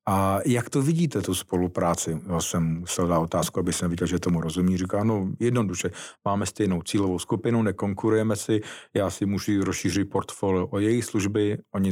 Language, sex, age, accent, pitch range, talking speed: Czech, male, 50-69, native, 90-105 Hz, 175 wpm